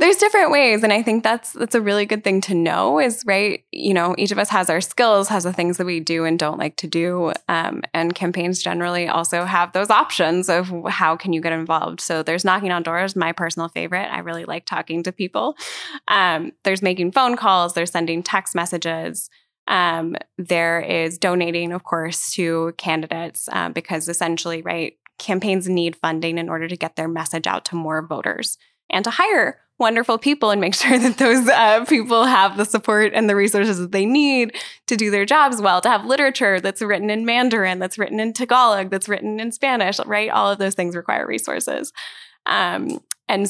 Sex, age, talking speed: female, 10-29, 205 wpm